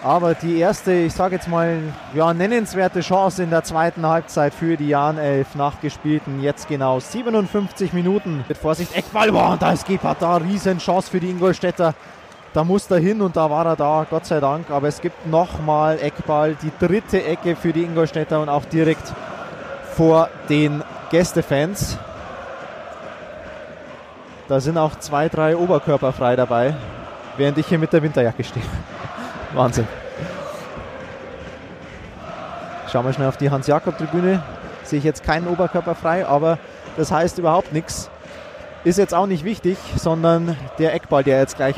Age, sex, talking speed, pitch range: 20-39, male, 155 wpm, 145-175 Hz